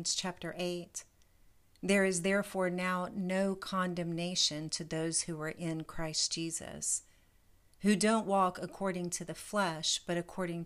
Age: 40-59